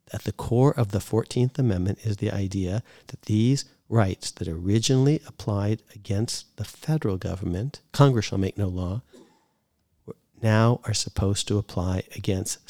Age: 50-69